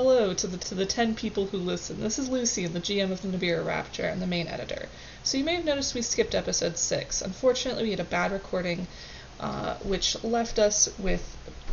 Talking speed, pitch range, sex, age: 215 wpm, 175-215 Hz, female, 20-39